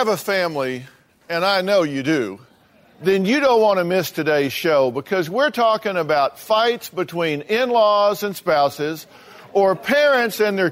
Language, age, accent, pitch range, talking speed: English, 50-69, American, 155-215 Hz, 160 wpm